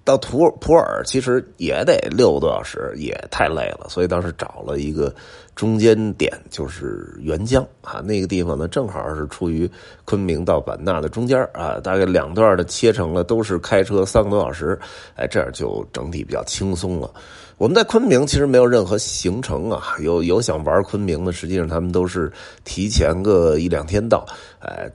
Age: 30-49